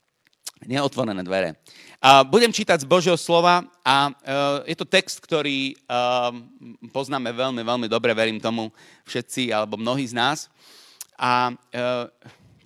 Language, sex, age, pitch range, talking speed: Slovak, male, 40-59, 120-160 Hz, 135 wpm